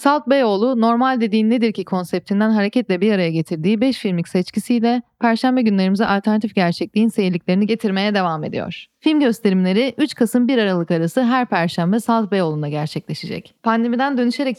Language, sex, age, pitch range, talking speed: Turkish, female, 30-49, 185-240 Hz, 150 wpm